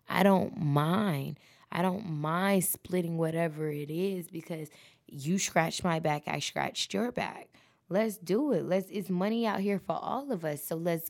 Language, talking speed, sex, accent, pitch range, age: English, 180 wpm, female, American, 145-180 Hz, 20-39